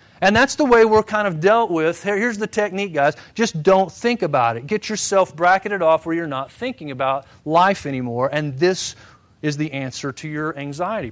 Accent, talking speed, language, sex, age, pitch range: American, 200 wpm, English, male, 40-59, 145-205 Hz